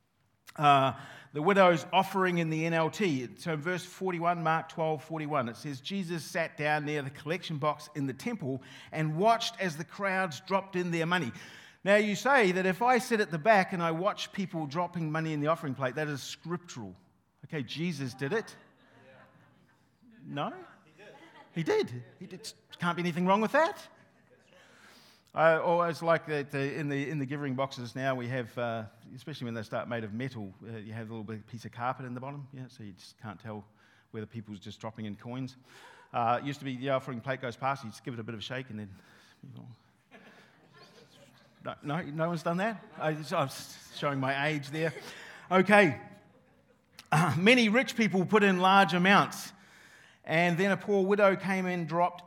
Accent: Australian